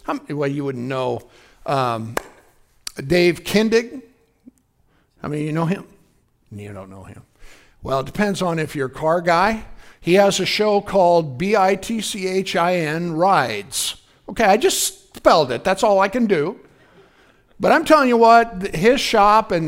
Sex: male